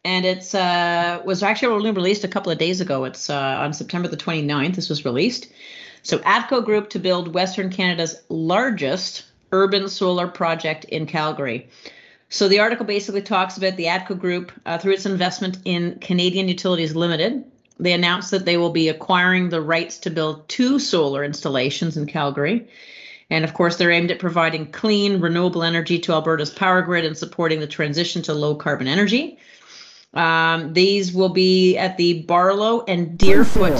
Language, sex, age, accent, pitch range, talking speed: English, female, 40-59, American, 165-190 Hz, 170 wpm